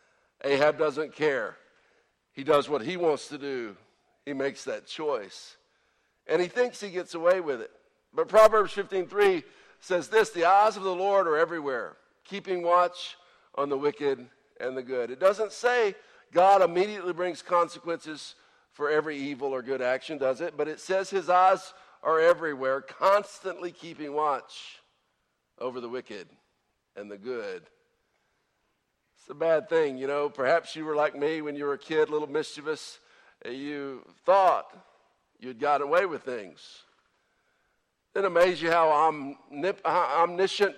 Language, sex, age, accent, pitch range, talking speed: English, male, 50-69, American, 150-190 Hz, 155 wpm